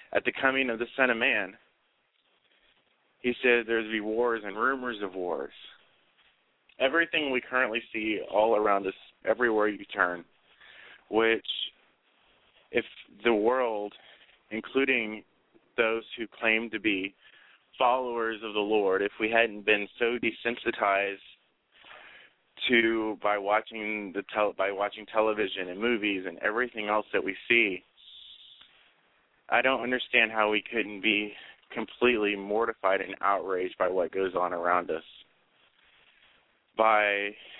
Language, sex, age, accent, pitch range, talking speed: English, male, 30-49, American, 100-115 Hz, 130 wpm